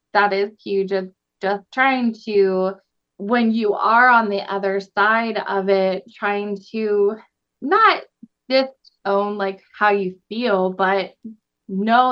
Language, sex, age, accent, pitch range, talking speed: English, female, 20-39, American, 205-265 Hz, 130 wpm